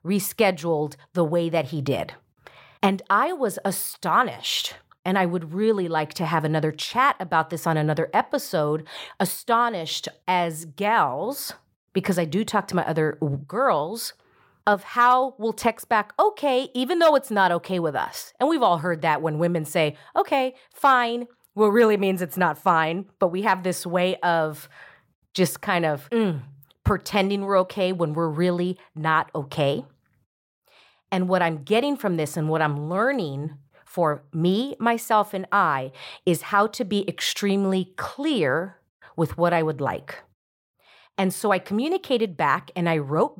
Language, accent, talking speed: English, American, 160 wpm